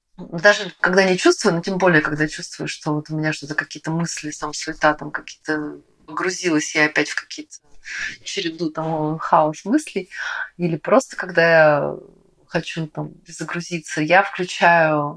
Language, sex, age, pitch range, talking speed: Russian, female, 30-49, 155-195 Hz, 150 wpm